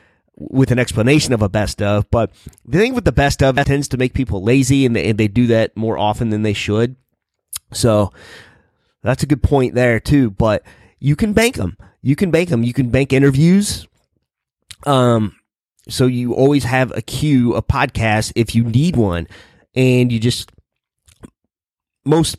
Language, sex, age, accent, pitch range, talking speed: English, male, 30-49, American, 110-135 Hz, 180 wpm